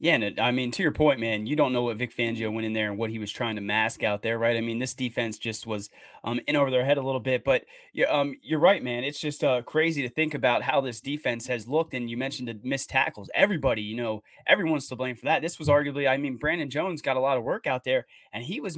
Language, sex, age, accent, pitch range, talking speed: English, male, 20-39, American, 120-150 Hz, 290 wpm